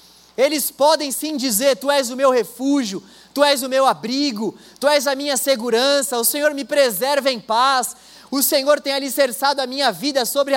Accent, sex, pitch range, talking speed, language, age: Brazilian, male, 215-280 Hz, 185 wpm, Portuguese, 20-39